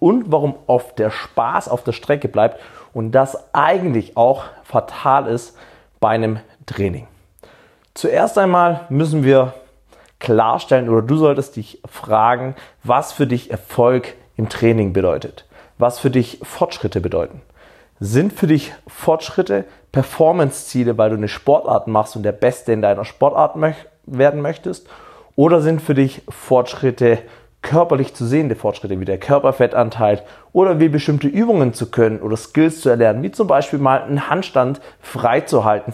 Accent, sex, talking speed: German, male, 145 wpm